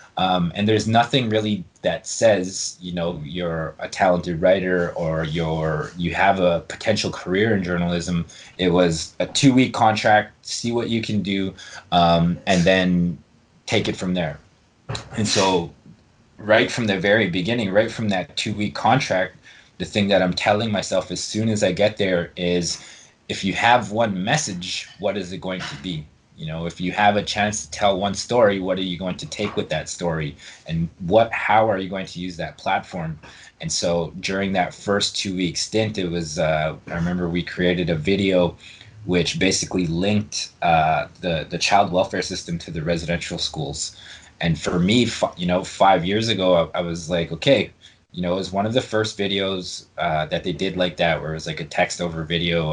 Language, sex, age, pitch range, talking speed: English, male, 20-39, 85-100 Hz, 190 wpm